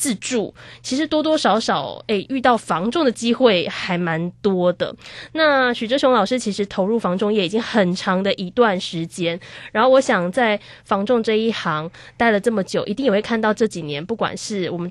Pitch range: 190-240 Hz